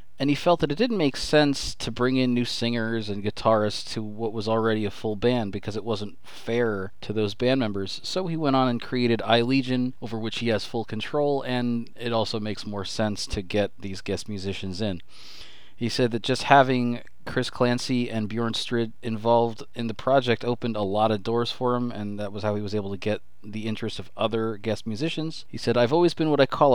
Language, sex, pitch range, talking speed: English, male, 105-125 Hz, 225 wpm